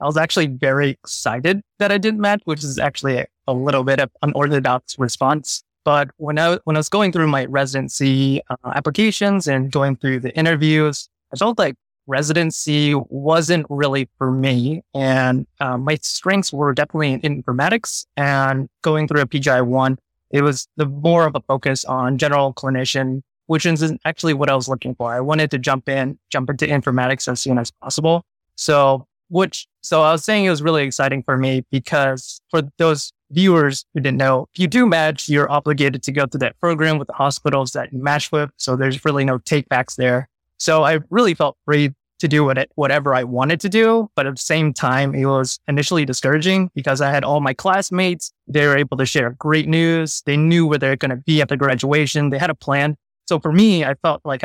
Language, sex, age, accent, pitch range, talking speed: English, male, 20-39, American, 135-160 Hz, 205 wpm